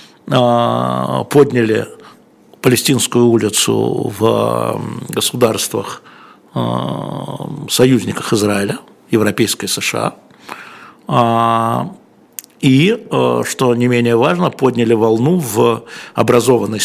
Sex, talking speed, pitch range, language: male, 65 wpm, 110-130 Hz, Russian